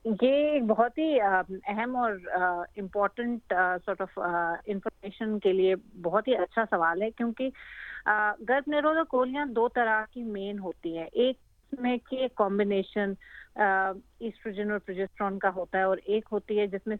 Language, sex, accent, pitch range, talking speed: Hindi, female, native, 195-235 Hz, 135 wpm